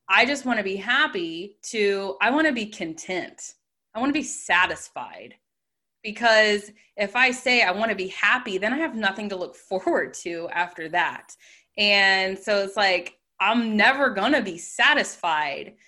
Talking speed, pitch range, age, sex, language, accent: 175 wpm, 190-255 Hz, 20-39, female, English, American